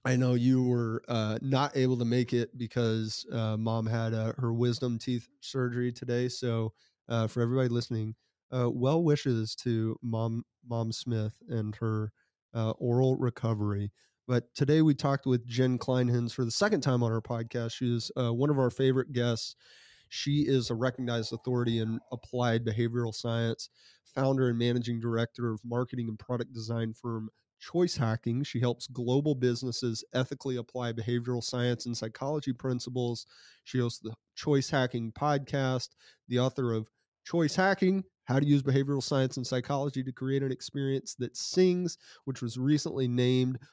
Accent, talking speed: American, 165 wpm